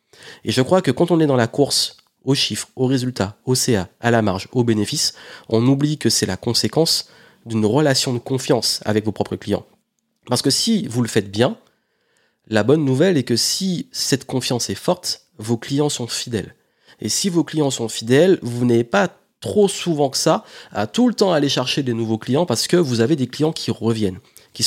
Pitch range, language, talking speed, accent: 110-145 Hz, French, 210 wpm, French